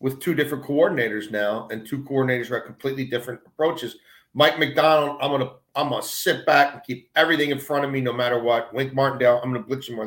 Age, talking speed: 40-59, 225 wpm